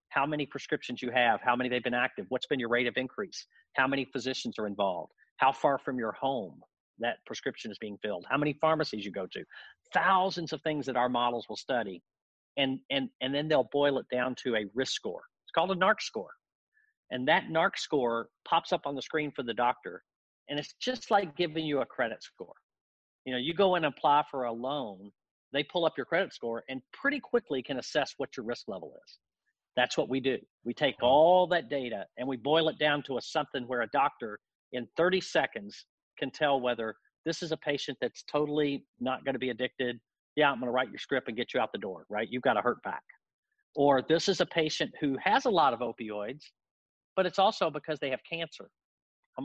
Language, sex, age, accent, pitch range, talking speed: English, male, 50-69, American, 125-160 Hz, 220 wpm